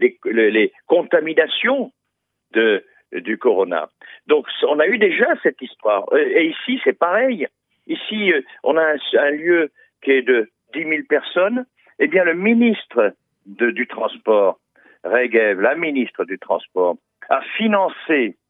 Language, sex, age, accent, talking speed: Italian, male, 60-79, French, 140 wpm